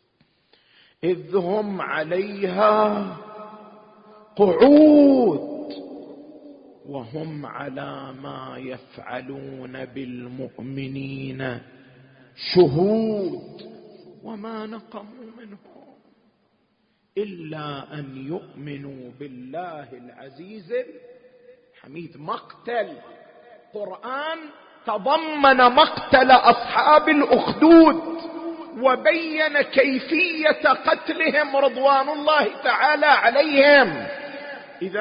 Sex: male